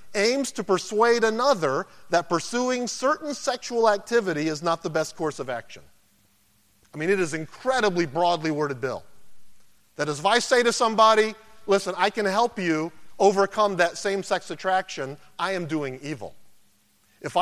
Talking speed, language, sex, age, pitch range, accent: 150 wpm, English, male, 40-59, 170-225 Hz, American